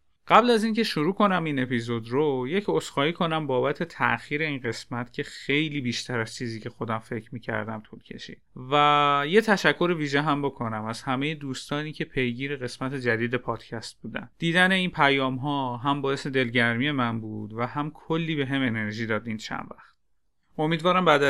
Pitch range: 120-160 Hz